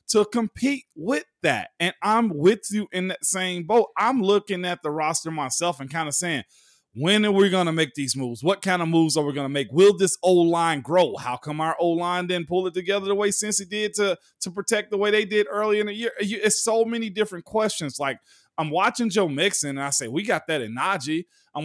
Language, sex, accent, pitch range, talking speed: English, male, American, 155-205 Hz, 240 wpm